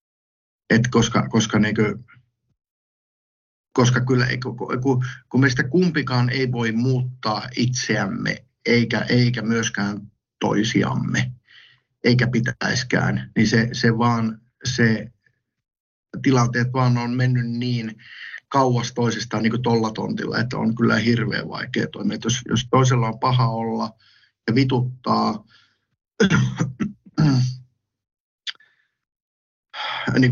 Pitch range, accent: 115-125 Hz, native